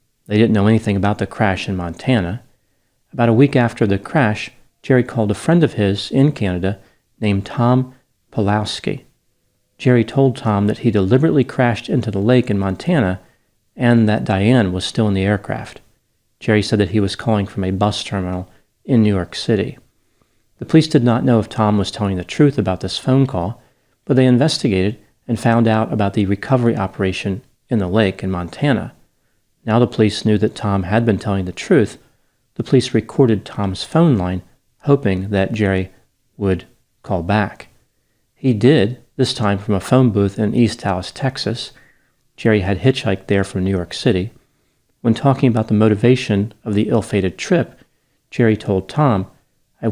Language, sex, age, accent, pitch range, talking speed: English, male, 40-59, American, 100-125 Hz, 175 wpm